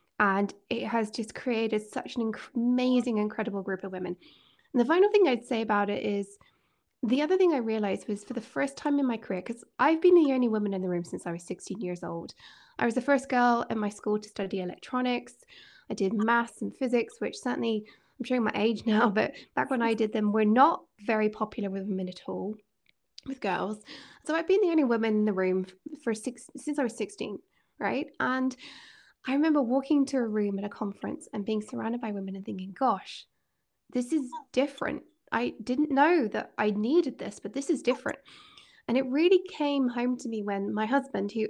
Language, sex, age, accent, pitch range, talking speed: English, female, 20-39, British, 210-270 Hz, 215 wpm